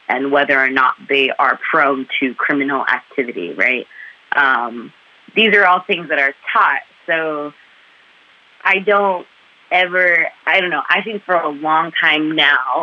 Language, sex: English, female